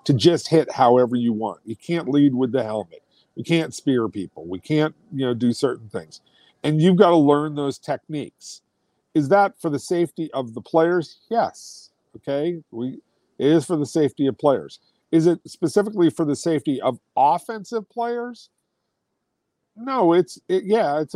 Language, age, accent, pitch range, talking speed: English, 50-69, American, 145-200 Hz, 175 wpm